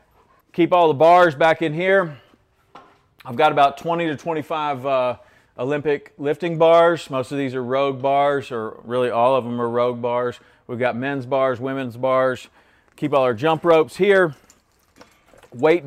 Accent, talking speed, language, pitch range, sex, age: American, 165 wpm, English, 125-155 Hz, male, 40-59